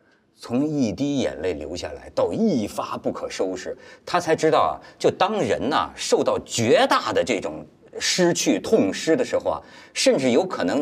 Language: Chinese